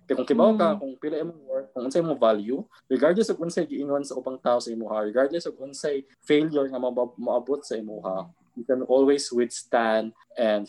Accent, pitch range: Filipino, 110-140 Hz